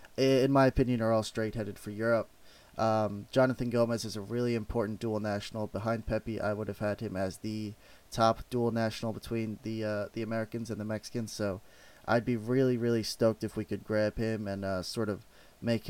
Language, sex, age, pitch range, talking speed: English, male, 20-39, 105-115 Hz, 205 wpm